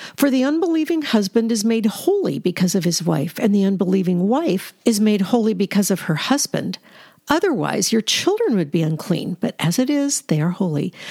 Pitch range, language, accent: 200-275 Hz, English, American